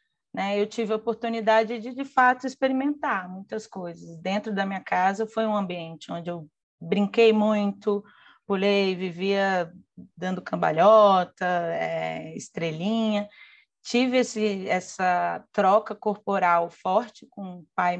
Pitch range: 185-225 Hz